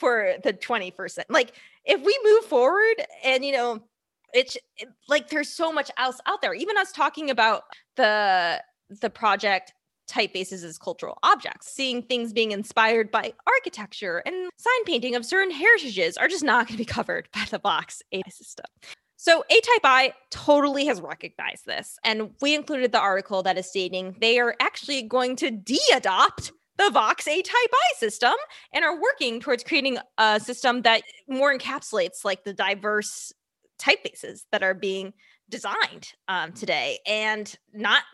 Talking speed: 170 wpm